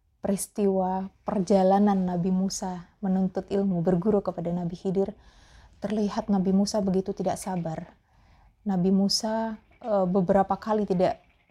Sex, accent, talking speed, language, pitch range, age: female, native, 110 wpm, Indonesian, 180-205 Hz, 20-39